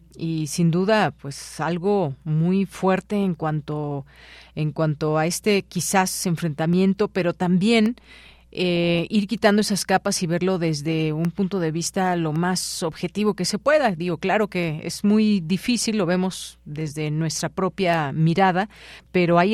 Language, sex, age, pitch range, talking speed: Spanish, female, 40-59, 155-195 Hz, 150 wpm